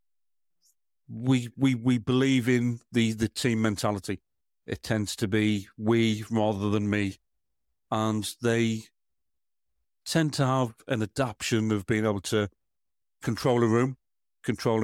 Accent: British